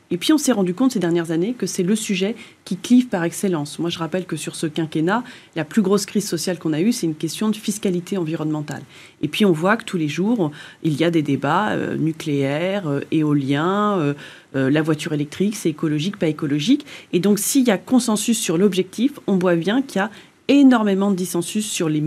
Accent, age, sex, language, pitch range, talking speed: French, 30-49, female, French, 170-225 Hz, 225 wpm